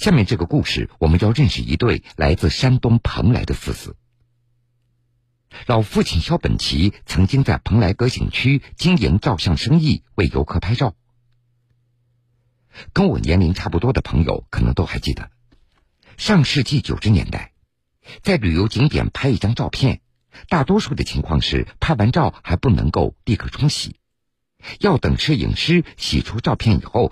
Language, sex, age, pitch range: Chinese, male, 50-69, 90-130 Hz